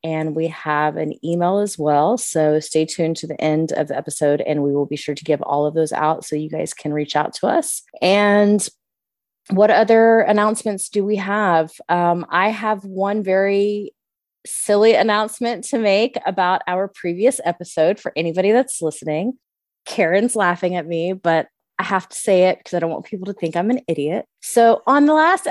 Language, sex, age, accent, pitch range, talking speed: English, female, 20-39, American, 165-225 Hz, 195 wpm